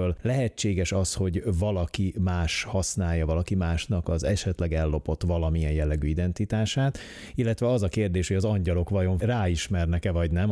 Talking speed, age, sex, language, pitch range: 145 wpm, 30-49, male, Hungarian, 85-105 Hz